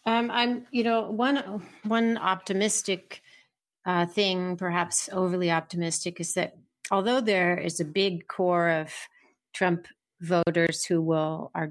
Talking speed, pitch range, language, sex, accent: 135 wpm, 165-190 Hz, English, female, American